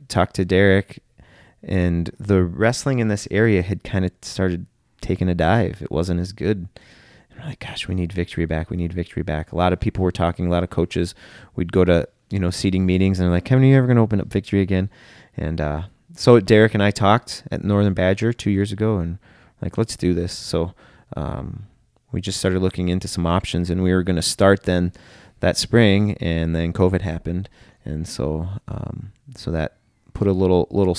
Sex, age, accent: male, 30-49, American